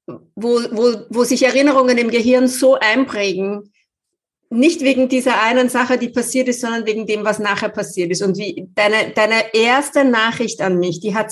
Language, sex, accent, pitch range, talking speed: English, female, German, 200-255 Hz, 180 wpm